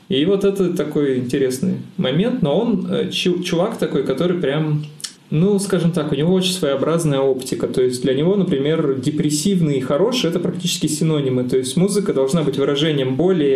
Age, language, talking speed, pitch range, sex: 20-39, Russian, 170 wpm, 140-180 Hz, male